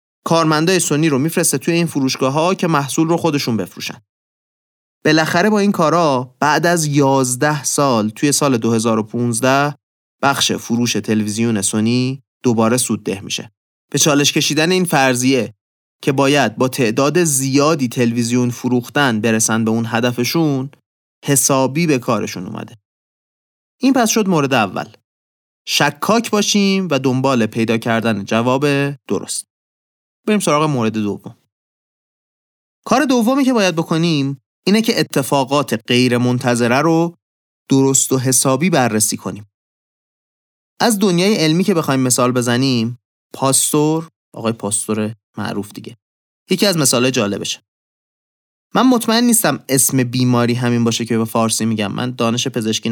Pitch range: 115-155 Hz